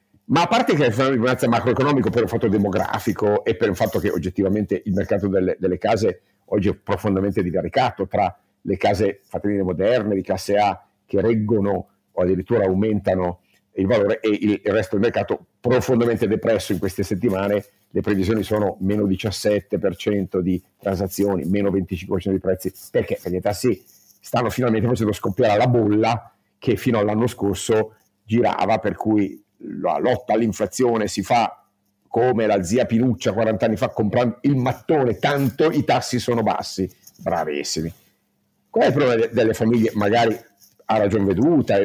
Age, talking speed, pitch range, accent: 50-69, 160 wpm, 100-115 Hz, native